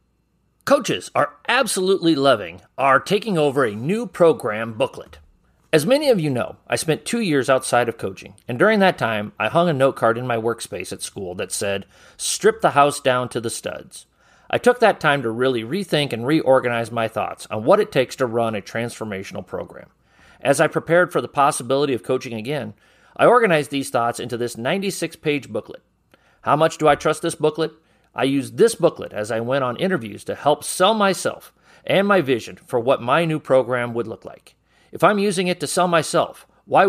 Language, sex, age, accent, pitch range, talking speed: English, male, 40-59, American, 120-175 Hz, 200 wpm